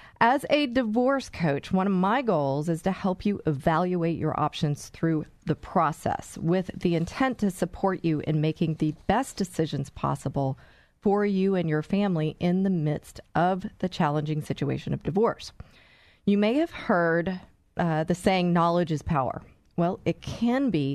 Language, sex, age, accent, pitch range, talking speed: English, female, 40-59, American, 155-200 Hz, 165 wpm